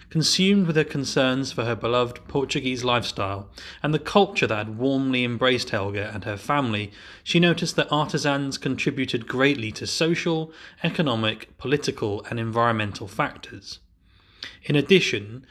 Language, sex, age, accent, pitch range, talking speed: English, male, 30-49, British, 110-145 Hz, 135 wpm